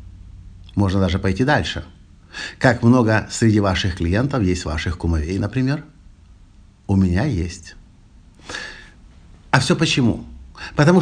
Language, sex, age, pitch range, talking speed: Russian, male, 50-69, 95-135 Hz, 110 wpm